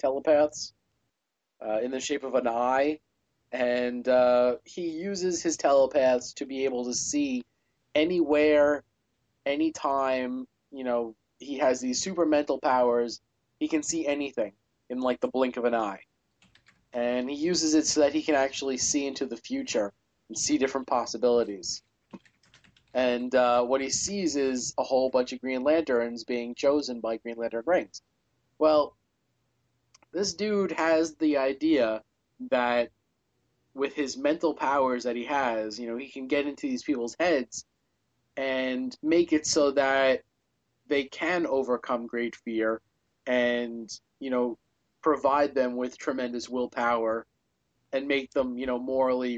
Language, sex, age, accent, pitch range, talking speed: English, male, 30-49, American, 120-145 Hz, 150 wpm